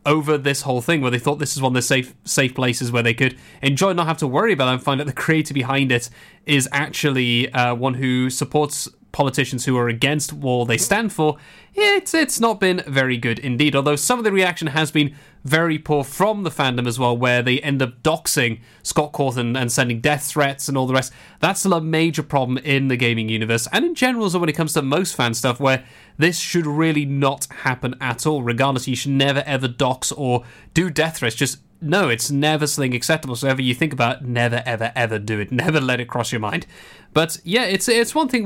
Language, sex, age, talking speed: English, male, 30-49, 230 wpm